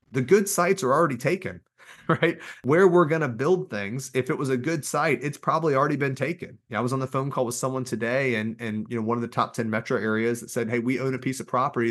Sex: male